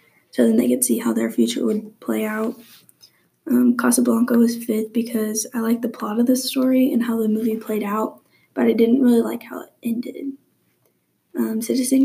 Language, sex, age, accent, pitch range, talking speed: English, female, 20-39, American, 220-245 Hz, 195 wpm